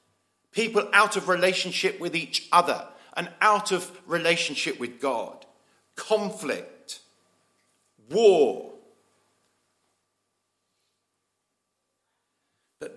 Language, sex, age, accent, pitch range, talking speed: English, male, 50-69, British, 170-245 Hz, 75 wpm